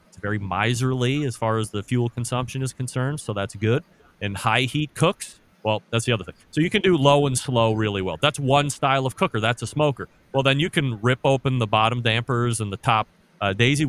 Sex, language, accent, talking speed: male, English, American, 235 wpm